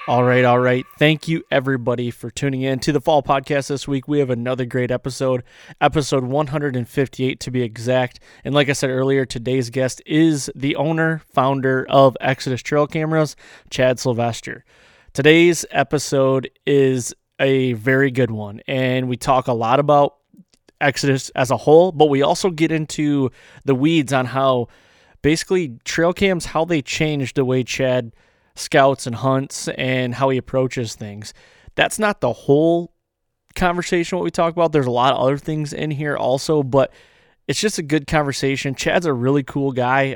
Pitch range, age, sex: 130-150 Hz, 20-39, male